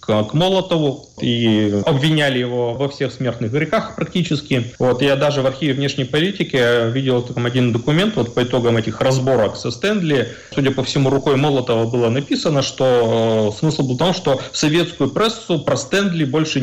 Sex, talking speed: male, 175 wpm